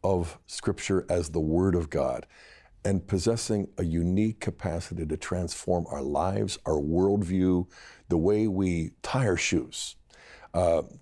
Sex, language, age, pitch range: male, English, 50-69, 85-115 Hz